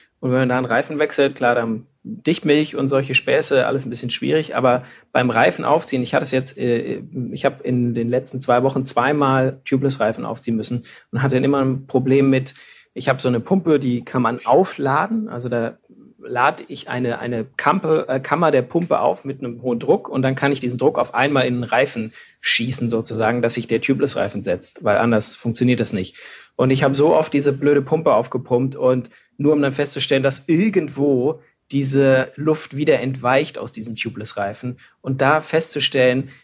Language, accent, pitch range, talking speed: German, German, 125-140 Hz, 195 wpm